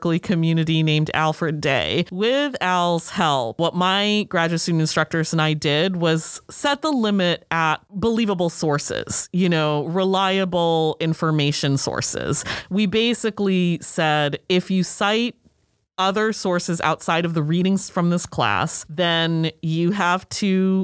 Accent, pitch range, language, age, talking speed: American, 160-200 Hz, English, 30-49, 130 wpm